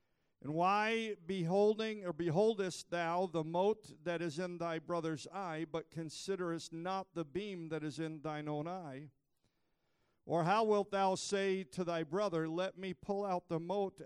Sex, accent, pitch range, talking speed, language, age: male, American, 150-180 Hz, 160 wpm, English, 50-69